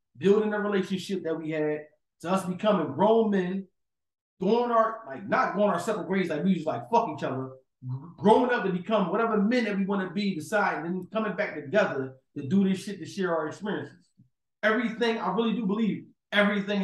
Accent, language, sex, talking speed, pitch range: American, English, male, 200 wpm, 190-240 Hz